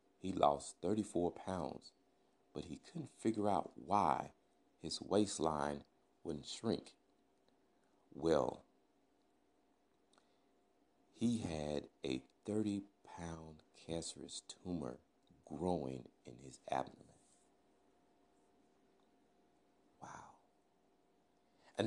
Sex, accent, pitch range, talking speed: male, American, 65-80 Hz, 75 wpm